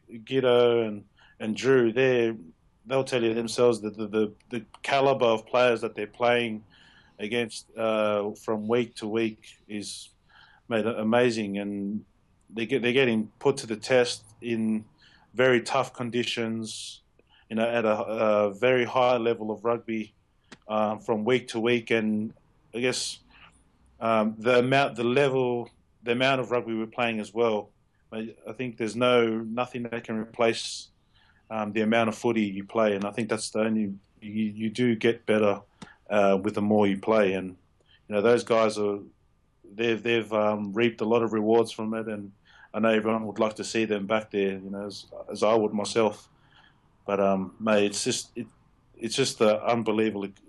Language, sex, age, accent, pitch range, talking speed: English, male, 30-49, Australian, 105-120 Hz, 175 wpm